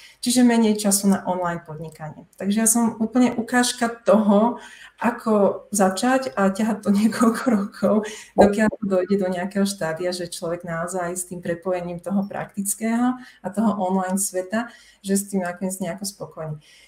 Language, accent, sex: Czech, native, female